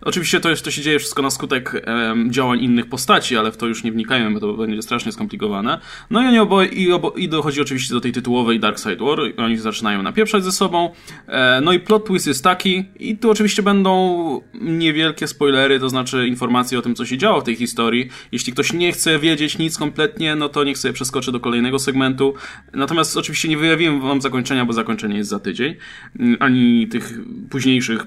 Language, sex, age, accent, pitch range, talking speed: Polish, male, 20-39, native, 120-170 Hz, 205 wpm